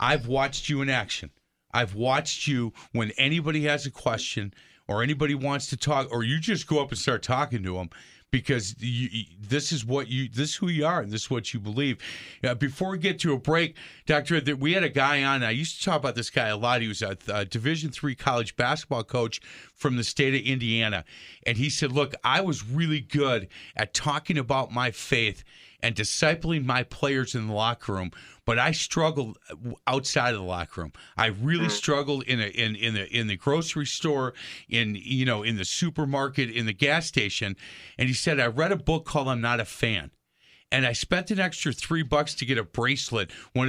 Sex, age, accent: male, 40-59, American